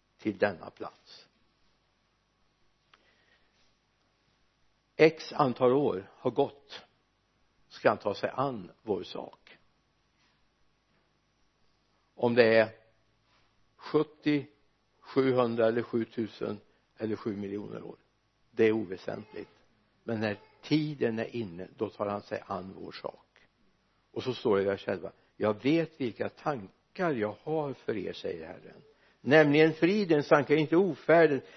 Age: 60-79